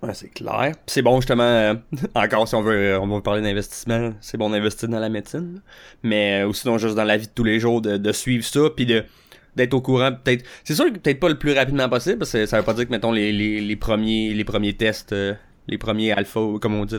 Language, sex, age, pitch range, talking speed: French, male, 20-39, 105-125 Hz, 270 wpm